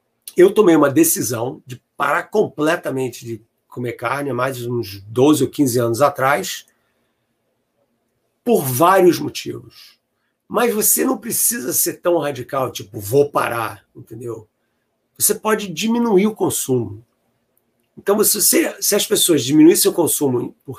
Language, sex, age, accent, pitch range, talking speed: Portuguese, male, 50-69, Brazilian, 120-180 Hz, 135 wpm